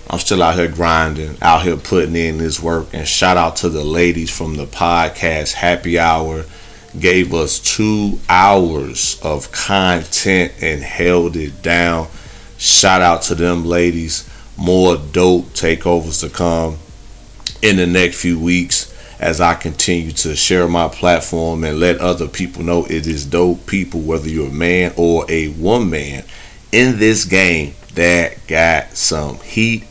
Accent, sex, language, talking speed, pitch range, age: American, male, English, 155 wpm, 80-95 Hz, 30-49